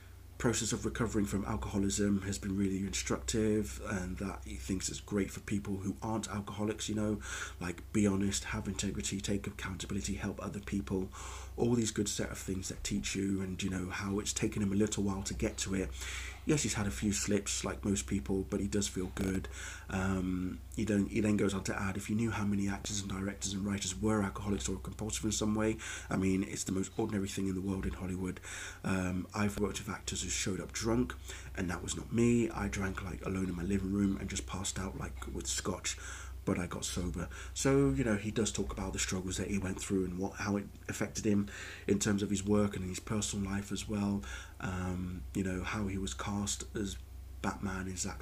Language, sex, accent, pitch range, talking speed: English, male, British, 90-105 Hz, 225 wpm